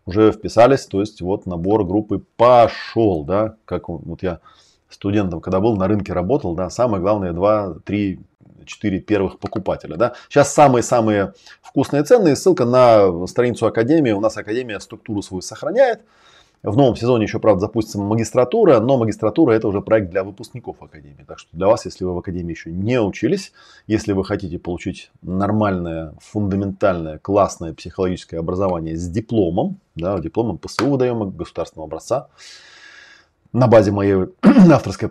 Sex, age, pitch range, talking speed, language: male, 20-39, 90-110 Hz, 150 wpm, Russian